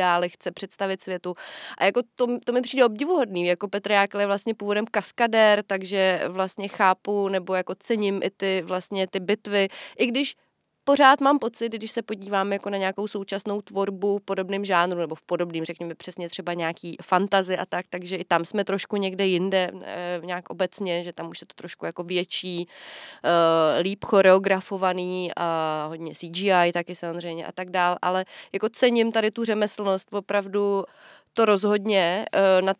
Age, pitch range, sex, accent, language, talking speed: 20-39, 180-210 Hz, female, native, Czech, 160 wpm